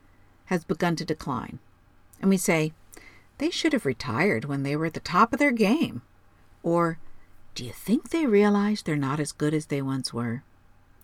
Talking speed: 185 wpm